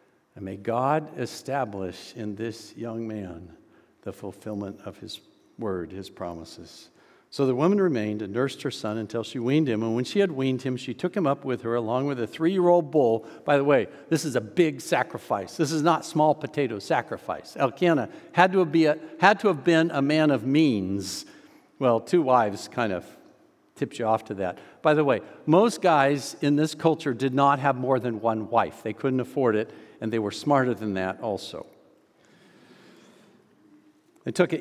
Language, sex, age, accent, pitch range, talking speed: English, male, 60-79, American, 120-170 Hz, 185 wpm